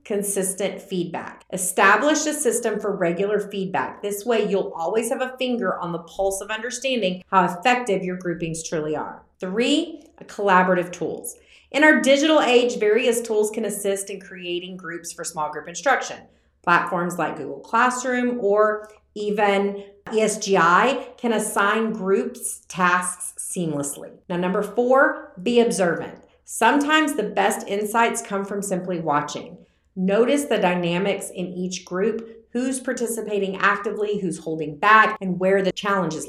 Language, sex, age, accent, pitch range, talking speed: English, female, 40-59, American, 180-235 Hz, 140 wpm